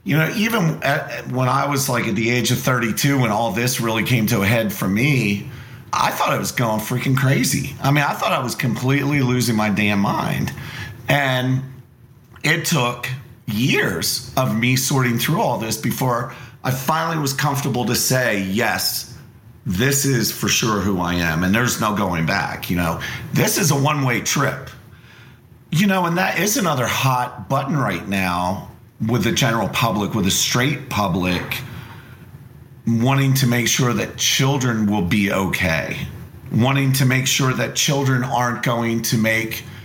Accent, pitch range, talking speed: American, 110-135 Hz, 175 wpm